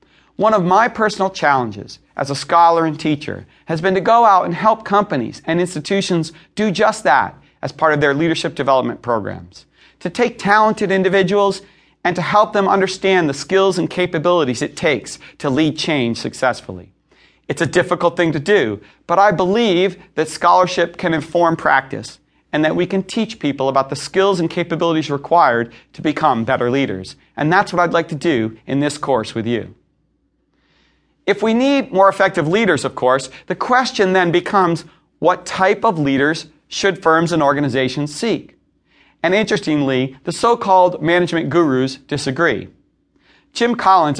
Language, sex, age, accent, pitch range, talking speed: English, male, 40-59, American, 145-195 Hz, 165 wpm